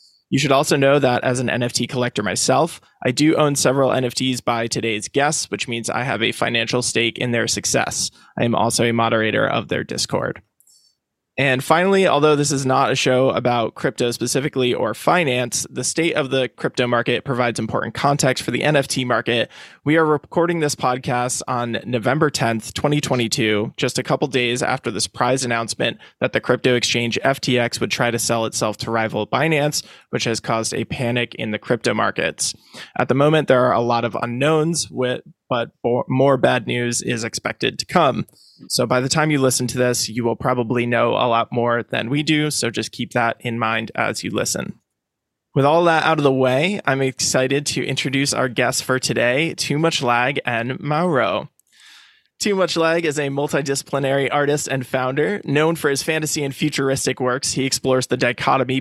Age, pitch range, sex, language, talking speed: 20-39, 120-145 Hz, male, English, 190 wpm